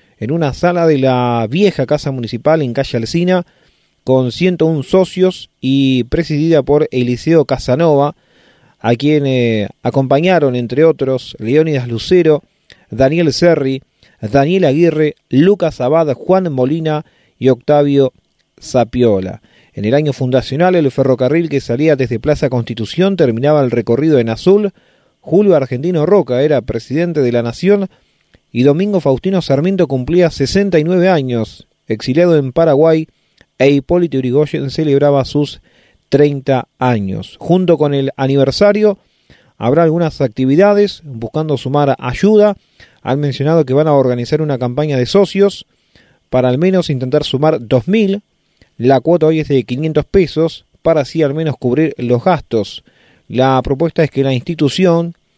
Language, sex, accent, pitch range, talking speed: Spanish, male, Argentinian, 130-165 Hz, 135 wpm